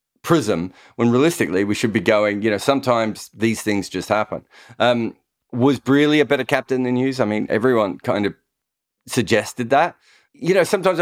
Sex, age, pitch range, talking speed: male, 40-59, 105-140 Hz, 175 wpm